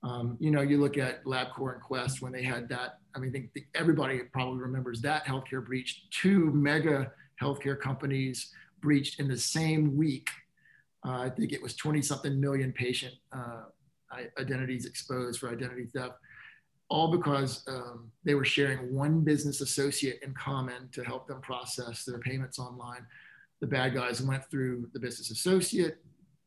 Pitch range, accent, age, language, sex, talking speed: 130-150 Hz, American, 40-59, English, male, 165 wpm